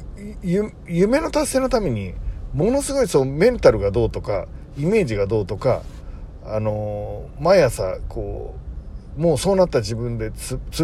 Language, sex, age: Japanese, male, 40-59